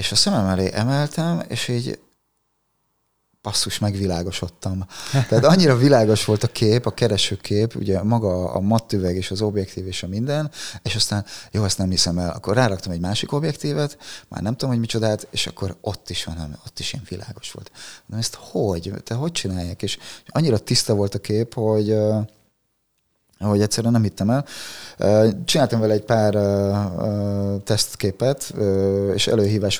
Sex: male